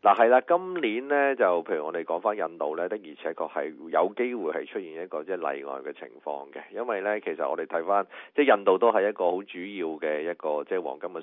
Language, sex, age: Chinese, male, 30-49